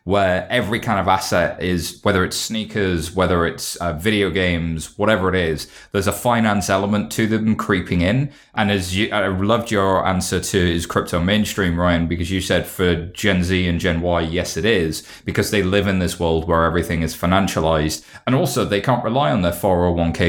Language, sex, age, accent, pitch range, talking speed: English, male, 20-39, British, 90-115 Hz, 200 wpm